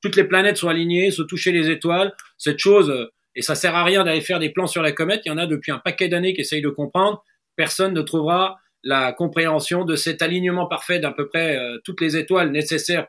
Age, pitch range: 40-59, 160-210 Hz